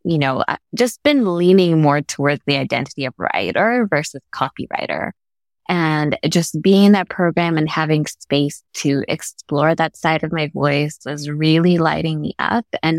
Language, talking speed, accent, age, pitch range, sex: English, 160 wpm, American, 20-39, 150-185 Hz, female